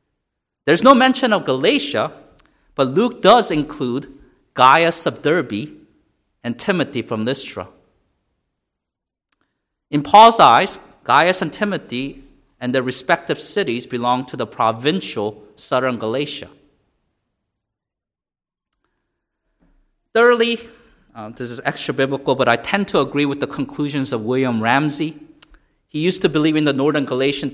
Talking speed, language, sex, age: 120 wpm, English, male, 50-69